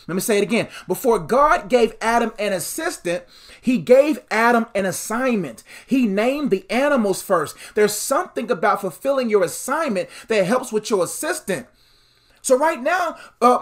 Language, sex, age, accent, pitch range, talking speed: English, male, 30-49, American, 205-255 Hz, 160 wpm